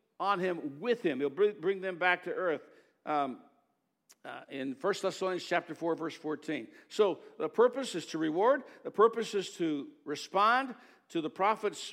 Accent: American